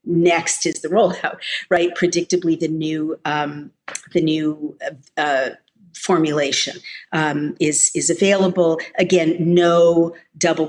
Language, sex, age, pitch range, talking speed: English, female, 50-69, 155-180 Hz, 110 wpm